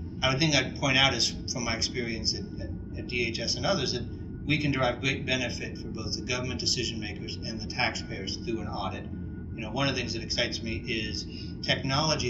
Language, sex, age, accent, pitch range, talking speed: English, male, 40-59, American, 95-120 Hz, 220 wpm